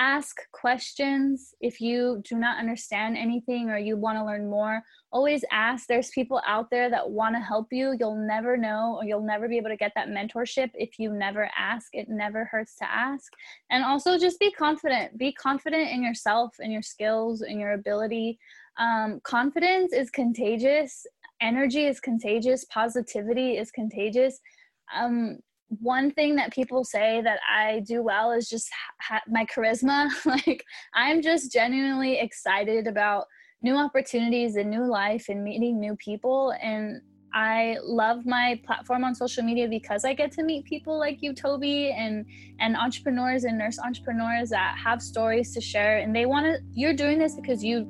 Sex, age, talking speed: female, 10-29, 175 wpm